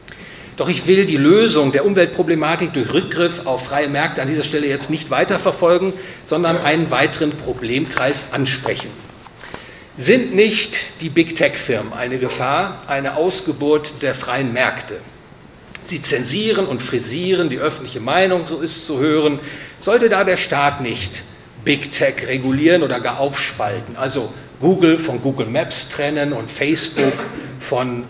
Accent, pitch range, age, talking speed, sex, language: German, 140-180 Hz, 40-59, 135 wpm, male, English